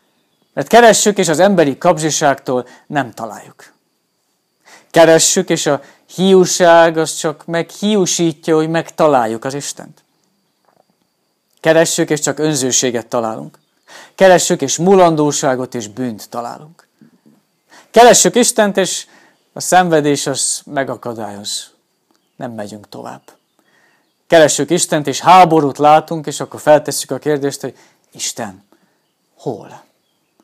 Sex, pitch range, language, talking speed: male, 130-175 Hz, Hungarian, 105 wpm